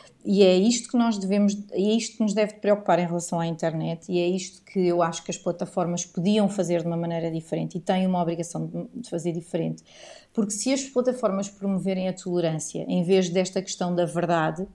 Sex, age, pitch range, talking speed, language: female, 30-49, 180-215 Hz, 210 wpm, Portuguese